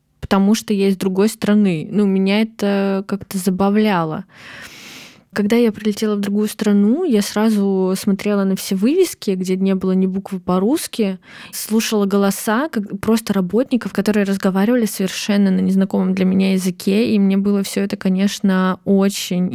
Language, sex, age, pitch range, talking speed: Russian, female, 20-39, 195-215 Hz, 145 wpm